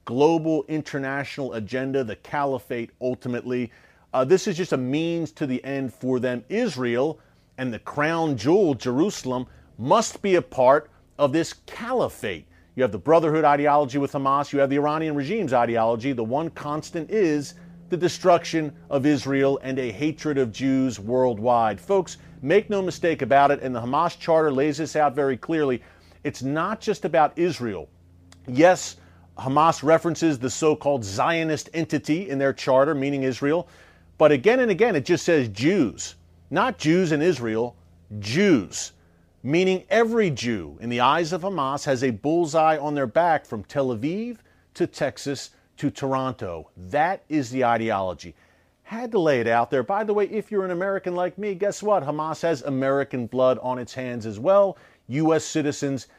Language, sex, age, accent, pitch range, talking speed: English, male, 40-59, American, 125-165 Hz, 165 wpm